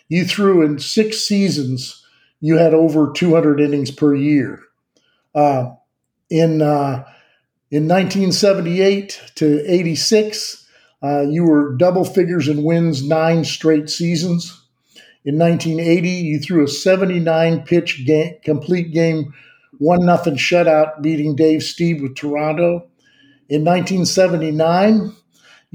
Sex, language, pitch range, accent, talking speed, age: male, English, 155-185 Hz, American, 115 wpm, 50-69